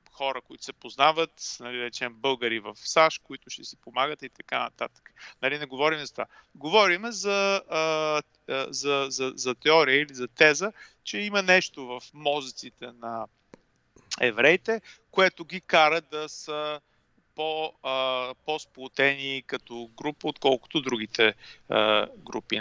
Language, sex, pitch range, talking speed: English, male, 120-160 Hz, 140 wpm